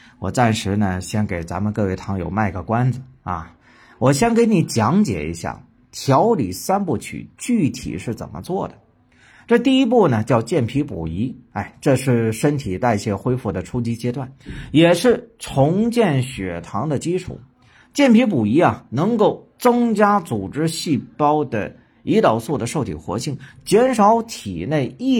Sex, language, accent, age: male, Chinese, native, 50-69